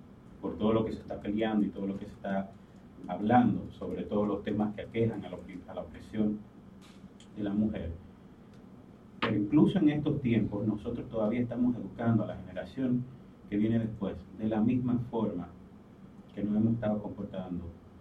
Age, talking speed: 40-59, 165 wpm